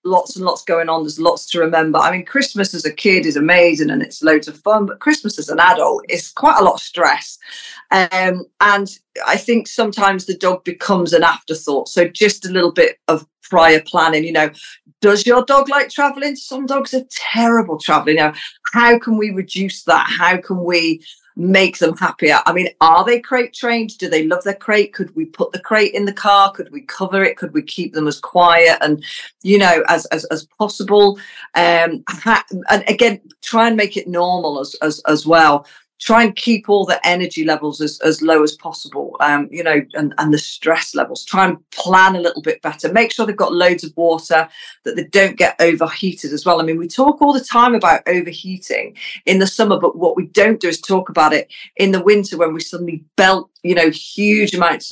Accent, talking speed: British, 215 wpm